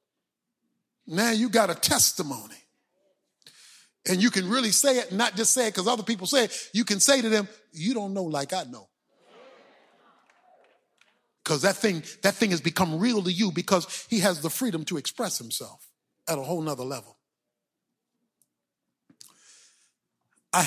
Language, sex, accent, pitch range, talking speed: English, male, American, 155-210 Hz, 160 wpm